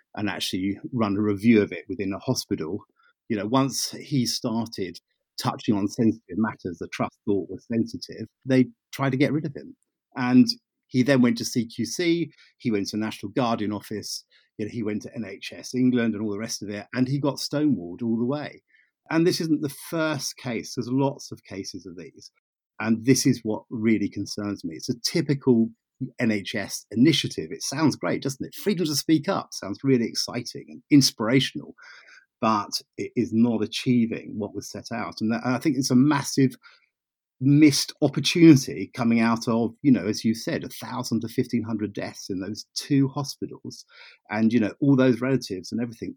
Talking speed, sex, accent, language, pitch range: 190 wpm, male, British, English, 110-140 Hz